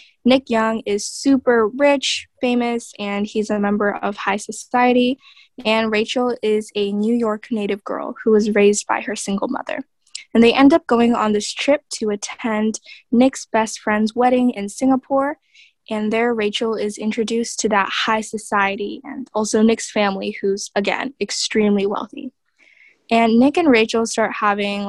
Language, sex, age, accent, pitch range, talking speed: English, female, 10-29, American, 210-255 Hz, 160 wpm